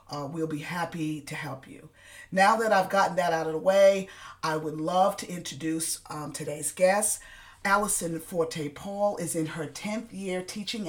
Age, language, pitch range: 40-59, English, 155-195 Hz